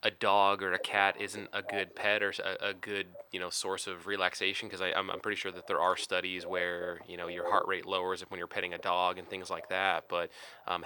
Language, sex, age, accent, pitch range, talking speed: English, male, 20-39, American, 95-105 Hz, 250 wpm